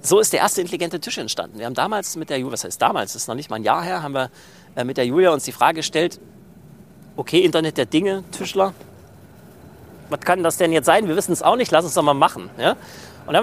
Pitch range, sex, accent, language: 130-195 Hz, male, German, German